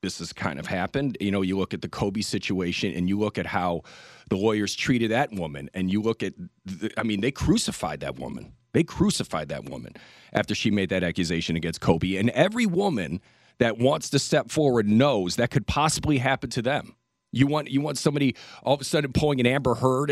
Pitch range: 105-150 Hz